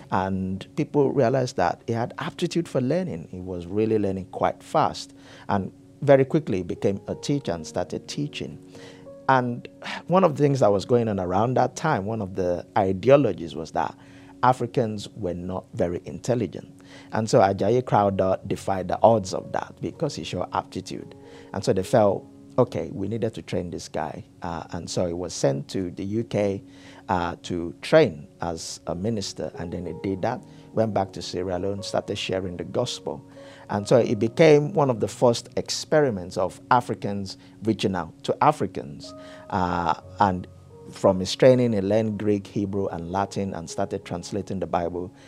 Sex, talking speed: male, 175 wpm